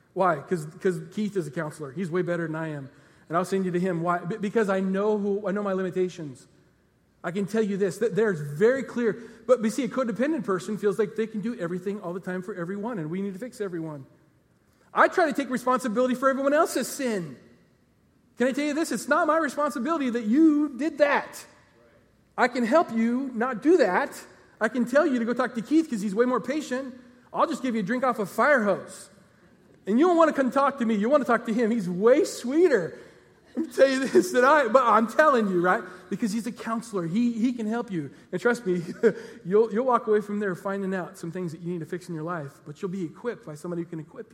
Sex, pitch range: male, 185-250 Hz